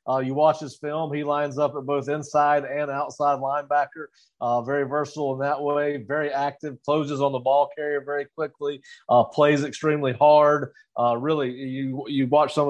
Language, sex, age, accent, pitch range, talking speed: English, male, 30-49, American, 130-150 Hz, 185 wpm